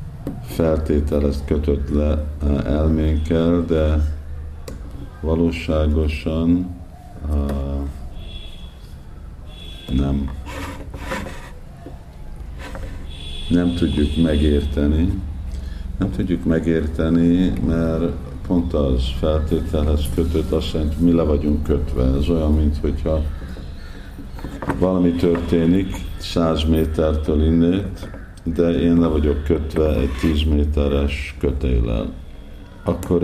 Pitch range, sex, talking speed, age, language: 70-85 Hz, male, 80 wpm, 50-69, Hungarian